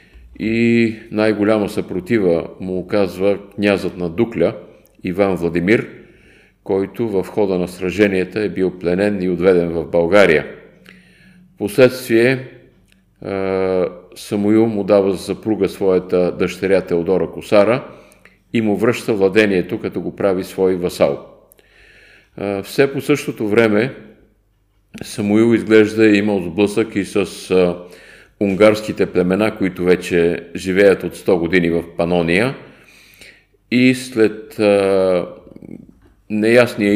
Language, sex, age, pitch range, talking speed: Bulgarian, male, 50-69, 90-110 Hz, 105 wpm